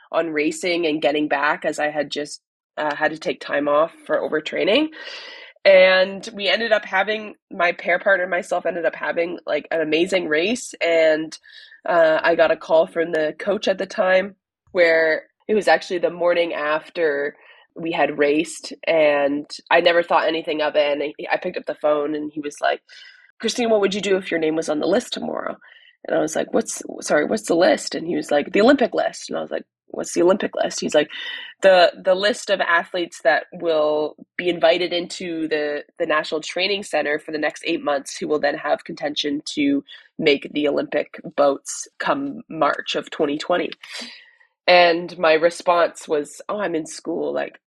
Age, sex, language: 20-39, female, English